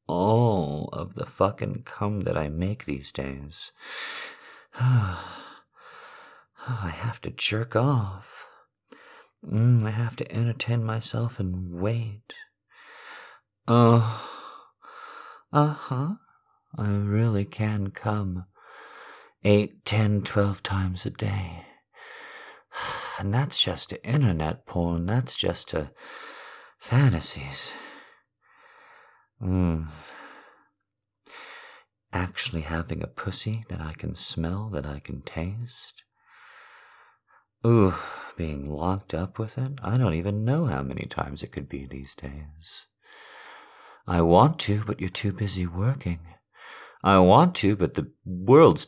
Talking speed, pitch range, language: 110 wpm, 90-130 Hz, English